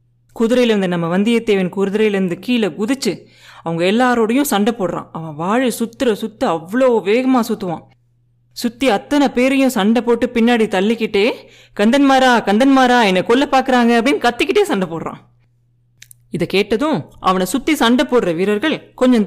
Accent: native